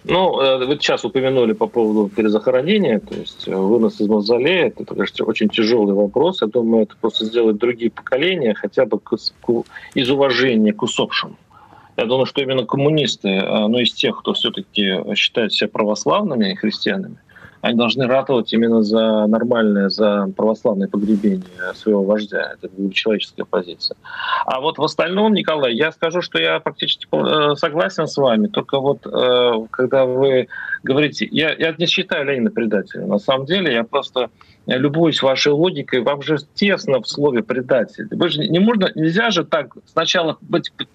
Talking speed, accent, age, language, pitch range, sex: 150 wpm, native, 40-59, Russian, 120-175 Hz, male